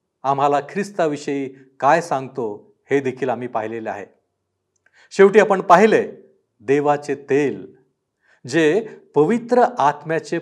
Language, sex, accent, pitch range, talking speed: Marathi, male, native, 135-180 Hz, 100 wpm